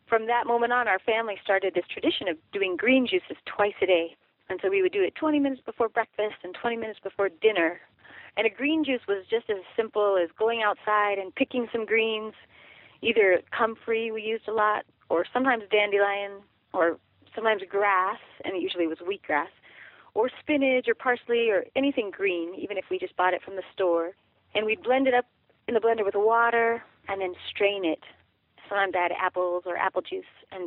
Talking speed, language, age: 200 wpm, English, 30-49